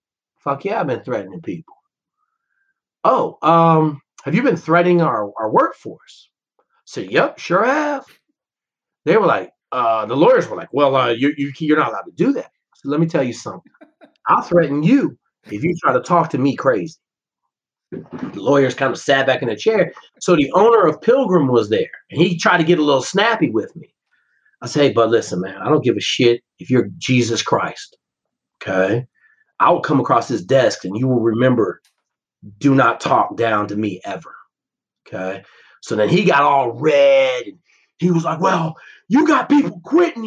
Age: 40-59